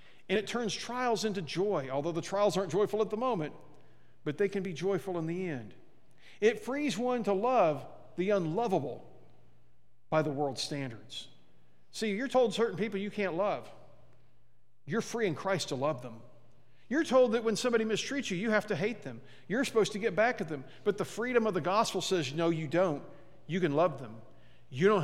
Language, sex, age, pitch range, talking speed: English, male, 50-69, 150-220 Hz, 200 wpm